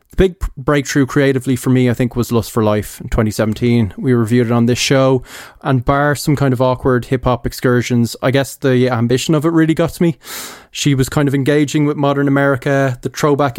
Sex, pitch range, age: male, 125-145 Hz, 20-39